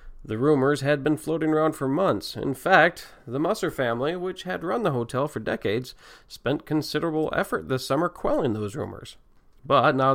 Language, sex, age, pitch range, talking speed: English, male, 40-59, 135-185 Hz, 175 wpm